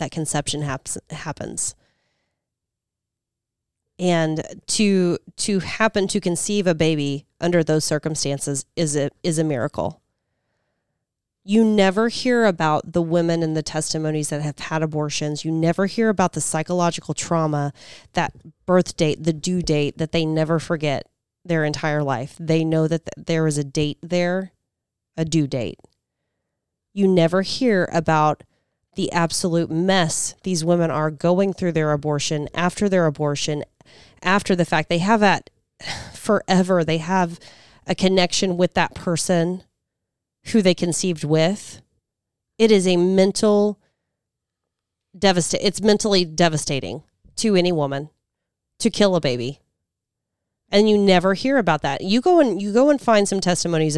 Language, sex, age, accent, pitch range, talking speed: English, female, 30-49, American, 150-185 Hz, 145 wpm